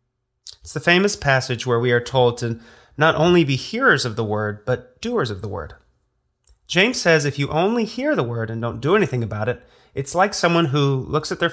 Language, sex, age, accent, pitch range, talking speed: English, male, 30-49, American, 115-170 Hz, 220 wpm